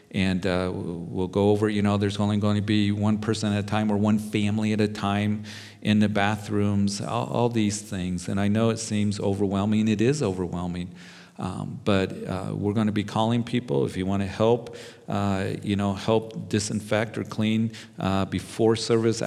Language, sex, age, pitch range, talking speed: English, male, 50-69, 95-110 Hz, 195 wpm